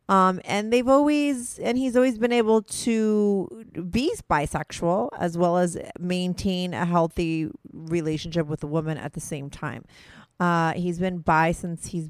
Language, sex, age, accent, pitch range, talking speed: English, female, 30-49, American, 160-195 Hz, 160 wpm